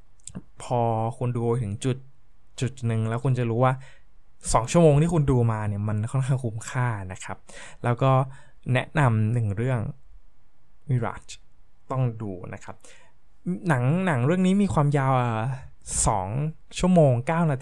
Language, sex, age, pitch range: Thai, male, 20-39, 110-140 Hz